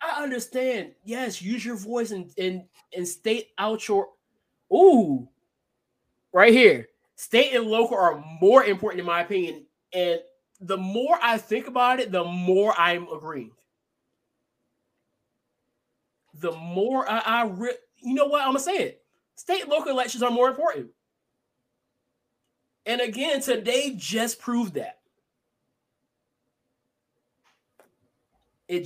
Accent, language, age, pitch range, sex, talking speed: American, English, 20-39, 190-255 Hz, male, 130 wpm